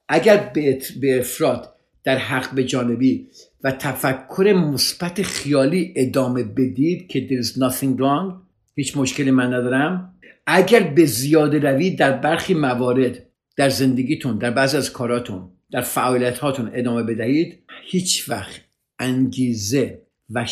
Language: Persian